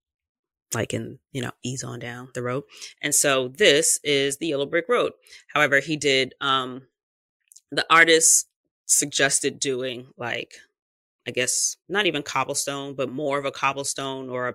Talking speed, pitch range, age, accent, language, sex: 155 wpm, 130-165 Hz, 20-39, American, English, female